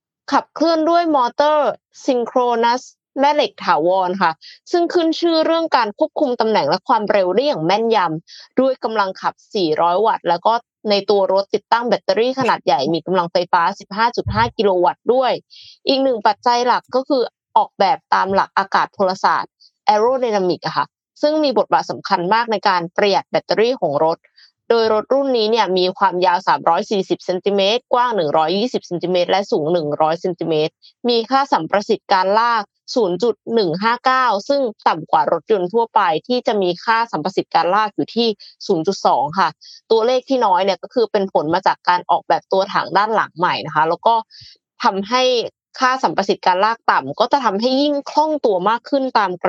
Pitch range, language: 190-265 Hz, Thai